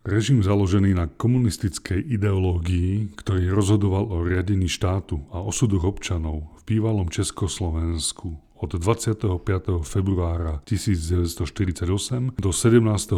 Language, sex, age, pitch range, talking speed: Slovak, male, 30-49, 85-105 Hz, 100 wpm